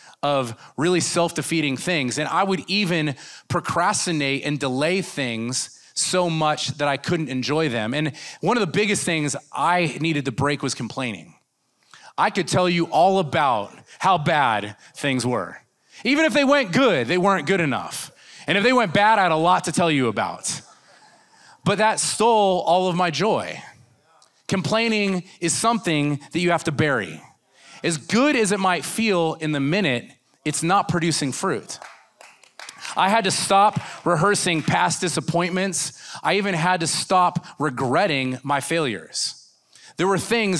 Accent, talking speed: American, 160 wpm